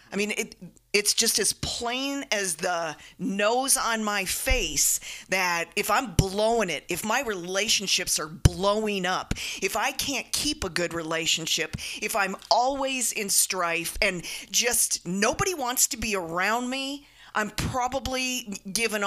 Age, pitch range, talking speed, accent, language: 40-59, 180-225 Hz, 145 wpm, American, English